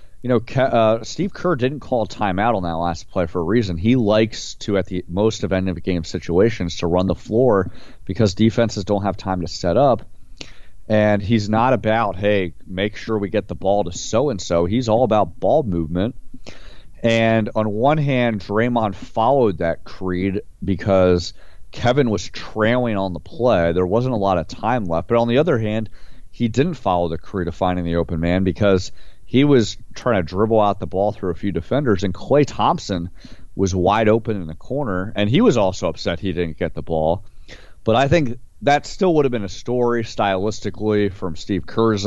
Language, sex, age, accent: English, male, 30-49, American